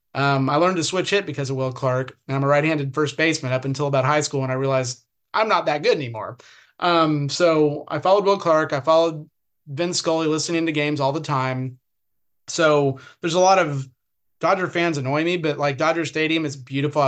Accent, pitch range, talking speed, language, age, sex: American, 140-160 Hz, 210 wpm, English, 30-49, male